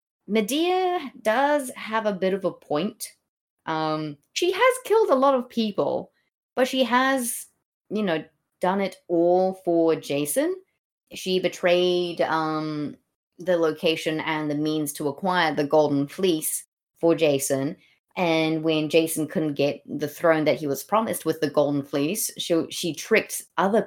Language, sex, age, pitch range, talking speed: English, female, 20-39, 155-210 Hz, 150 wpm